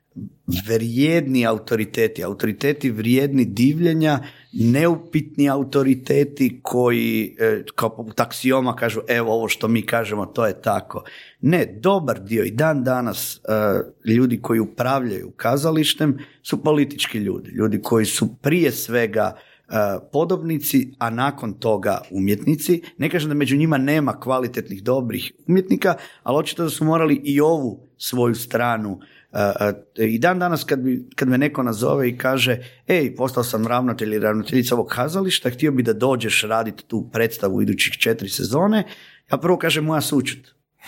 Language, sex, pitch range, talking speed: Croatian, male, 115-145 Hz, 140 wpm